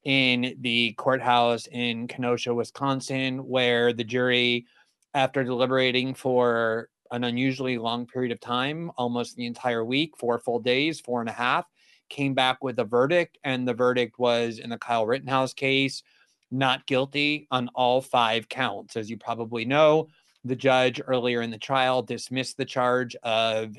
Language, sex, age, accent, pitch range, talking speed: English, male, 30-49, American, 120-130 Hz, 160 wpm